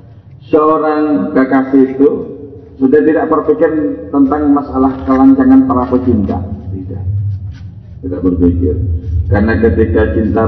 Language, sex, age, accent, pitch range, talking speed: Indonesian, male, 40-59, native, 95-120 Hz, 95 wpm